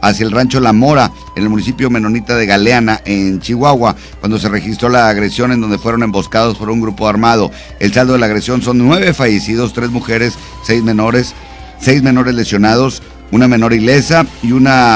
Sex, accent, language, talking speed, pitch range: male, Mexican, Spanish, 185 wpm, 110-125 Hz